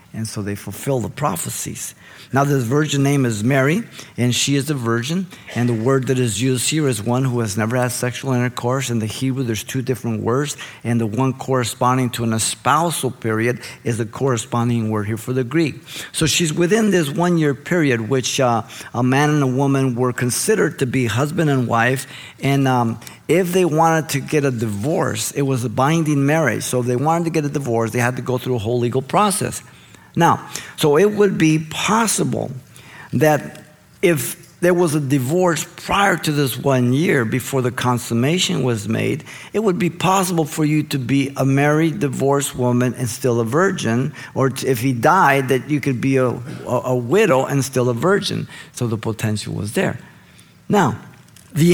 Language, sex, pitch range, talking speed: English, male, 125-155 Hz, 195 wpm